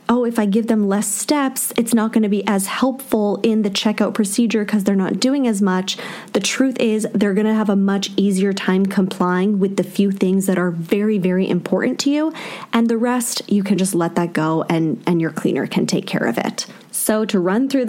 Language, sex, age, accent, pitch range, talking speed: English, female, 20-39, American, 190-230 Hz, 230 wpm